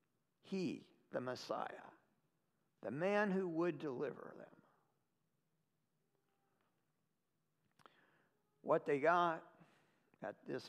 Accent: American